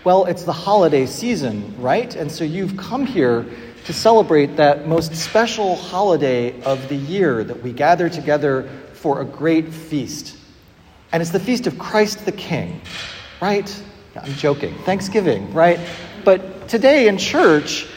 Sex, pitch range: male, 130-180 Hz